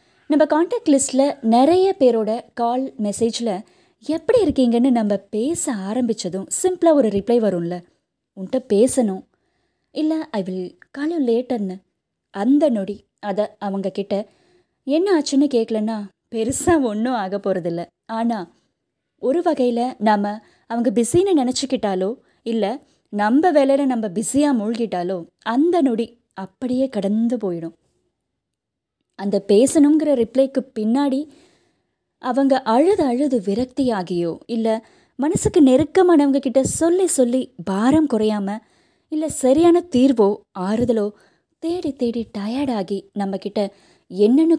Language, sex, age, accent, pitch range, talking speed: Tamil, female, 20-39, native, 205-275 Hz, 100 wpm